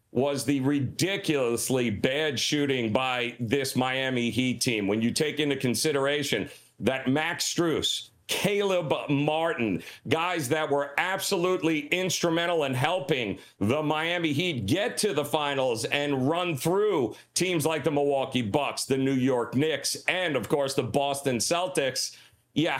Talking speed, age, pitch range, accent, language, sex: 140 wpm, 40-59, 135-175 Hz, American, English, male